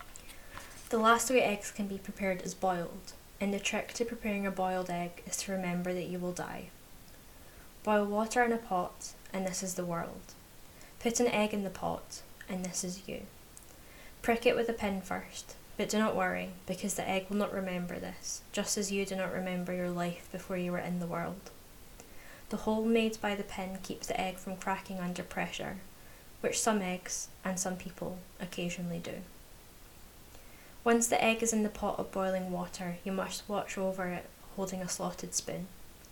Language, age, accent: English, 10-29, British